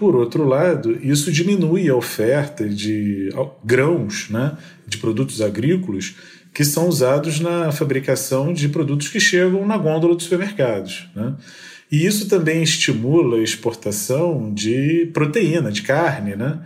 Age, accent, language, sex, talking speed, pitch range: 40-59, Brazilian, Portuguese, male, 135 wpm, 115-165 Hz